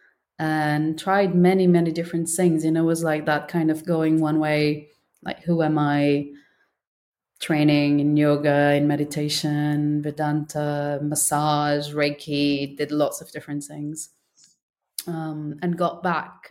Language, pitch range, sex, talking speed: English, 150-175 Hz, female, 140 wpm